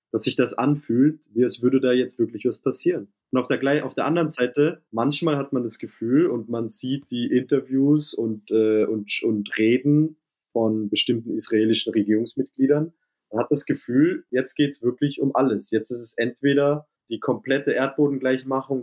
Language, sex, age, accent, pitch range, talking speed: German, male, 20-39, German, 110-135 Hz, 175 wpm